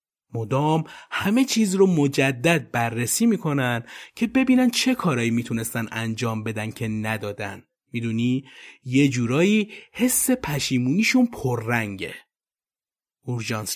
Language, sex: Persian, male